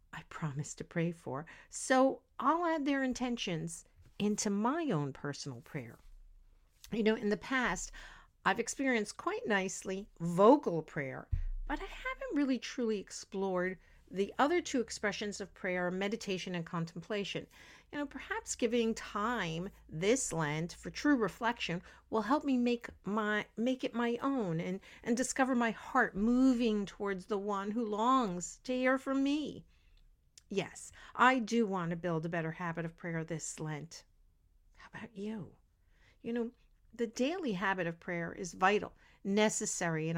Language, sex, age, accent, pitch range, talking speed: English, female, 50-69, American, 165-235 Hz, 150 wpm